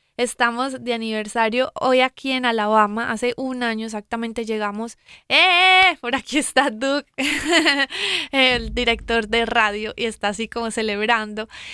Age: 20-39